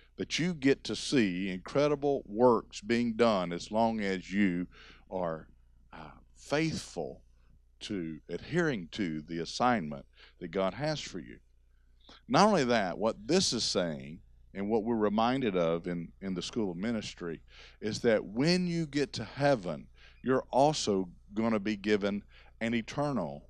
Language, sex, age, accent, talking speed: English, male, 50-69, American, 150 wpm